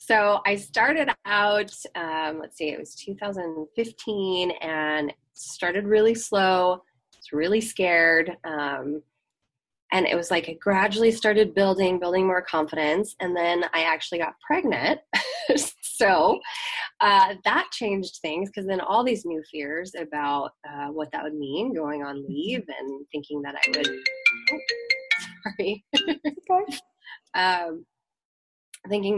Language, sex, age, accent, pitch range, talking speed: English, female, 20-39, American, 155-215 Hz, 135 wpm